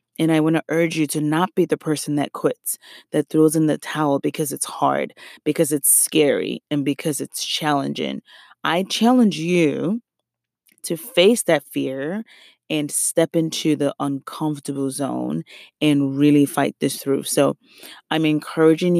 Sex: female